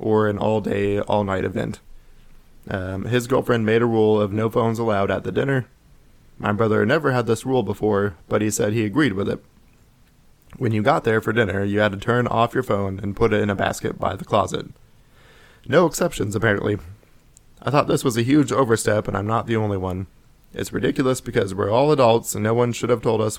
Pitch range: 105-120 Hz